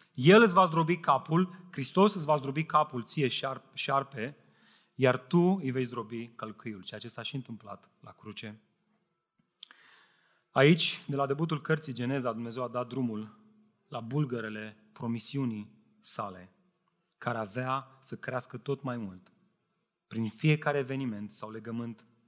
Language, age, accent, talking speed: Romanian, 30-49, native, 135 wpm